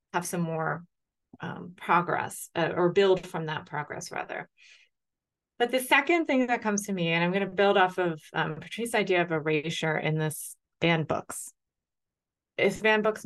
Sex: female